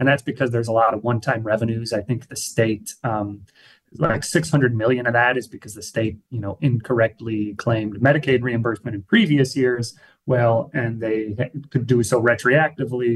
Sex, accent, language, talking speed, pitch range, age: male, American, English, 180 wpm, 110-130 Hz, 30-49